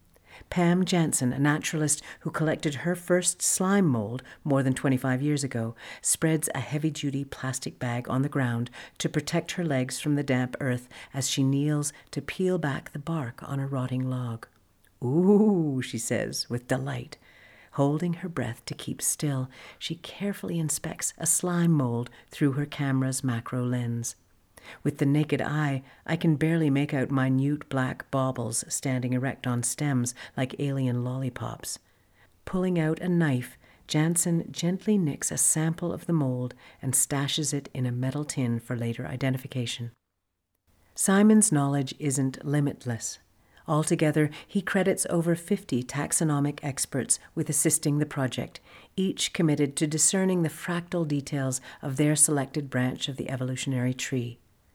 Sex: female